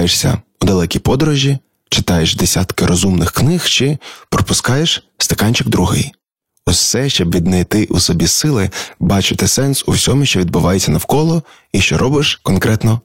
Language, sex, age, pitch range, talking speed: Ukrainian, male, 20-39, 90-115 Hz, 130 wpm